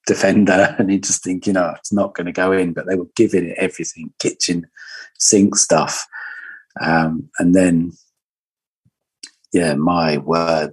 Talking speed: 155 wpm